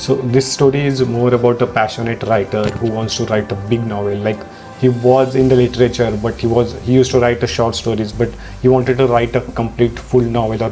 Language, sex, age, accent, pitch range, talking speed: English, male, 30-49, Indian, 115-125 Hz, 235 wpm